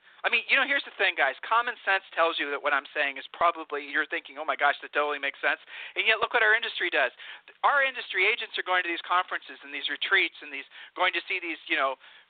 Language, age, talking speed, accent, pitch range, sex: English, 40-59, 260 wpm, American, 160-205 Hz, male